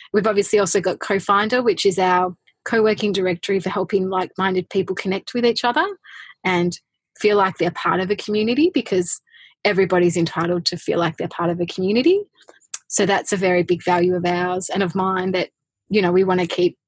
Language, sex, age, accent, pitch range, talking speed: English, female, 20-39, Australian, 180-210 Hz, 195 wpm